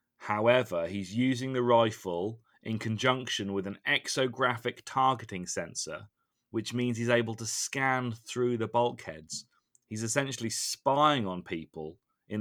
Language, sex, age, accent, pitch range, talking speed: English, male, 30-49, British, 100-125 Hz, 130 wpm